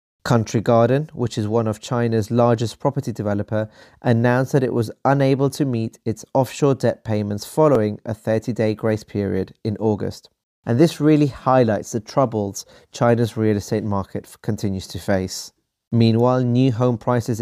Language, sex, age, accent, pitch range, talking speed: English, male, 30-49, British, 105-130 Hz, 155 wpm